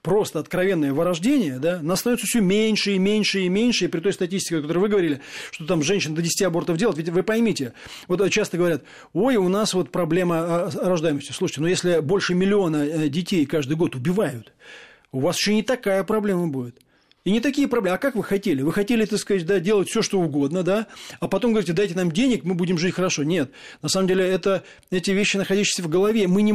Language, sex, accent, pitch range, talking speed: Russian, male, native, 165-205 Hz, 215 wpm